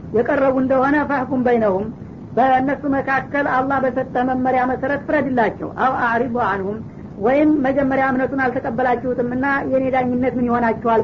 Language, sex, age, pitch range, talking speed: Amharic, female, 50-69, 240-270 Hz, 115 wpm